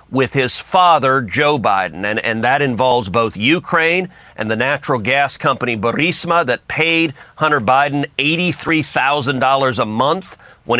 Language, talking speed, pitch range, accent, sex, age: English, 140 wpm, 130-165 Hz, American, male, 40-59